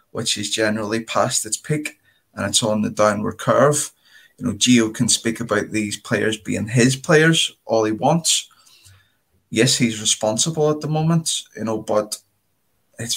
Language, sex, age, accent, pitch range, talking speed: English, male, 20-39, British, 110-130 Hz, 165 wpm